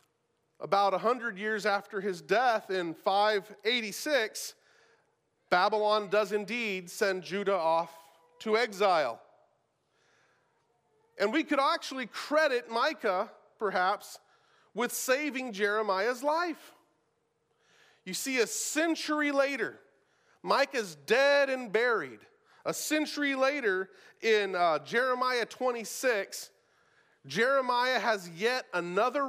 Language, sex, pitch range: English, male, 190-265 Hz